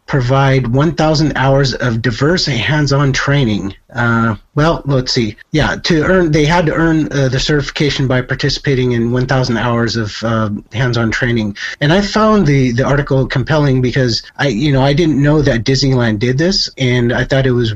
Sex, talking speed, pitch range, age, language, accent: male, 185 wpm, 120-140 Hz, 30-49, English, American